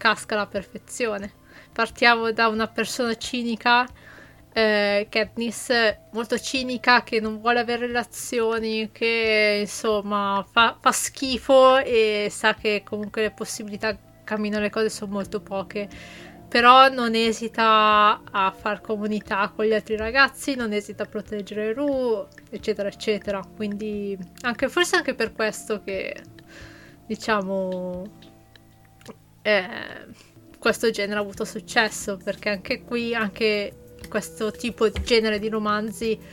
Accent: native